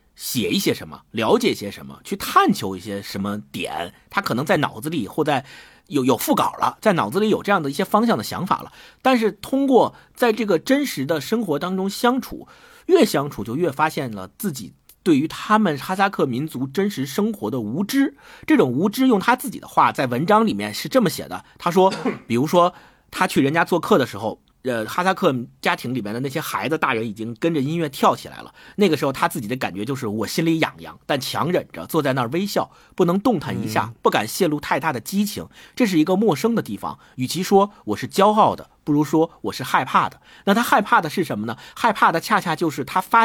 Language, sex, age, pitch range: Chinese, male, 50-69, 130-220 Hz